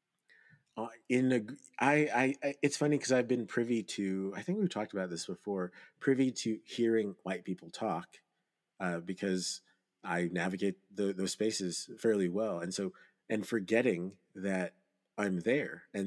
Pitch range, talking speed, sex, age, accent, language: 95-135 Hz, 160 wpm, male, 30-49, American, English